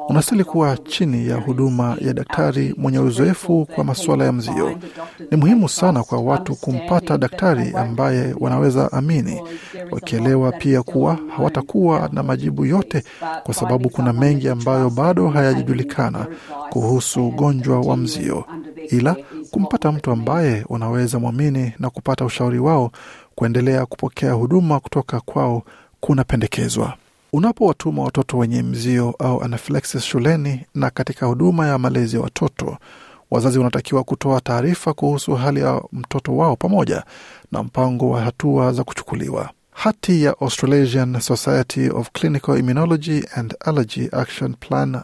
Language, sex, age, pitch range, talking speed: Swahili, male, 50-69, 125-155 Hz, 130 wpm